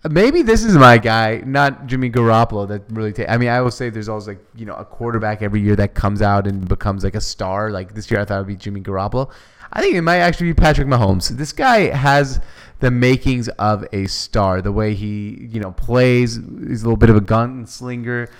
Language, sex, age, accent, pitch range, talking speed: English, male, 20-39, American, 110-130 Hz, 235 wpm